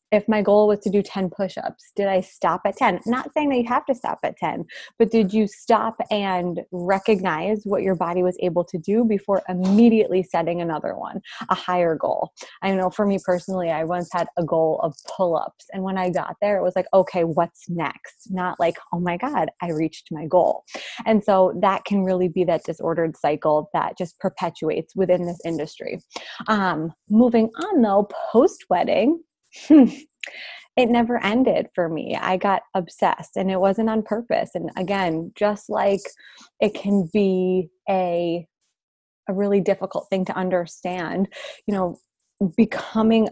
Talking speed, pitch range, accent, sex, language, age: 175 wpm, 175-210 Hz, American, female, English, 20-39